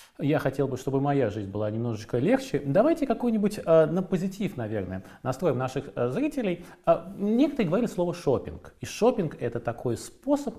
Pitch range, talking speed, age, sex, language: 115-185 Hz, 165 wpm, 20-39, male, Russian